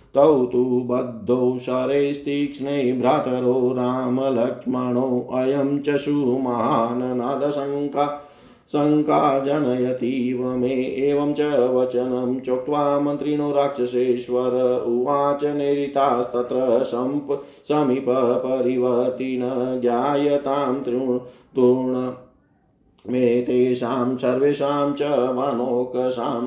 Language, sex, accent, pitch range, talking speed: Hindi, male, native, 125-140 Hz, 50 wpm